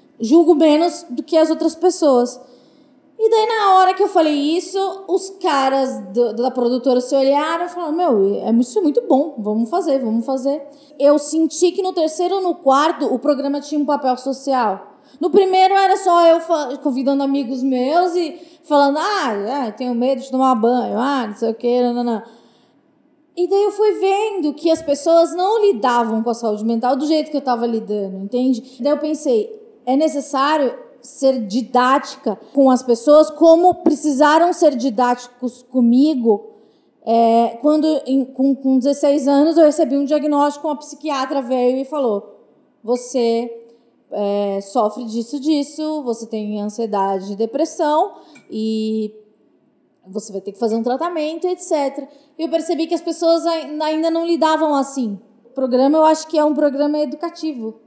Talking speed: 165 wpm